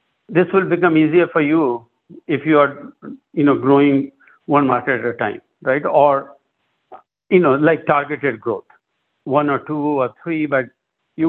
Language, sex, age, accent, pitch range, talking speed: English, male, 60-79, Indian, 140-180 Hz, 165 wpm